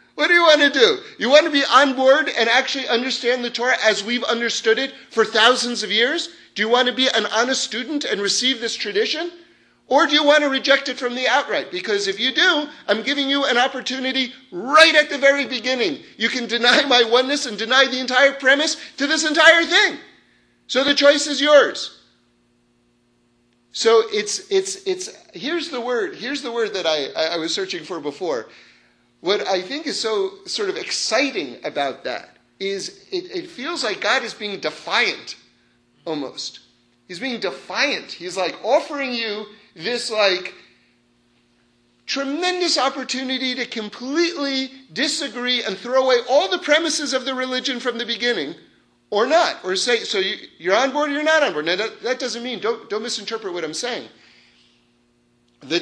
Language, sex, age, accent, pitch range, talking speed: English, male, 40-59, American, 210-290 Hz, 180 wpm